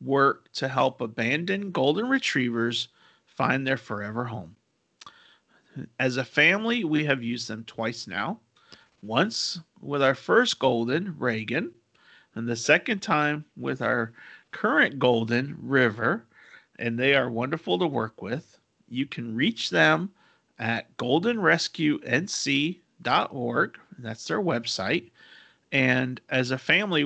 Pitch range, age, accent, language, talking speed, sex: 115-150 Hz, 40-59, American, English, 120 wpm, male